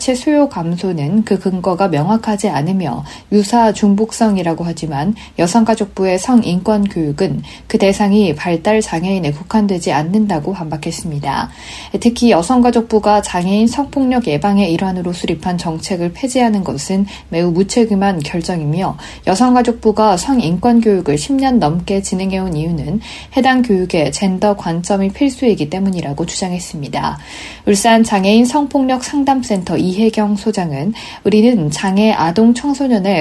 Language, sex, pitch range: Korean, female, 175-230 Hz